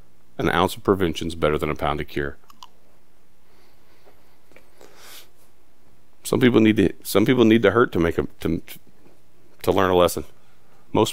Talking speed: 155 wpm